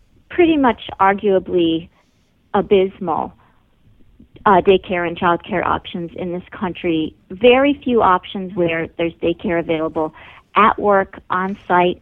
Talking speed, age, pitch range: 115 wpm, 50-69, 170-200 Hz